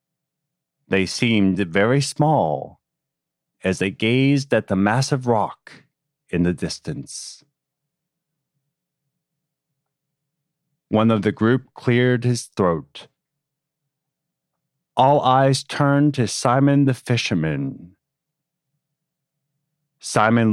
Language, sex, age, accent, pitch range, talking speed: English, male, 40-59, American, 115-150 Hz, 85 wpm